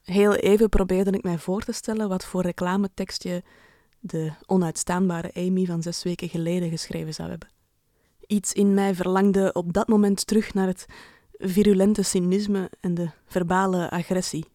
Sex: female